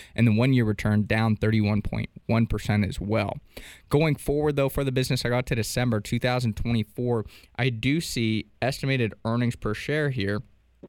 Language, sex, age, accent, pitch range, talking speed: English, male, 20-39, American, 105-120 Hz, 150 wpm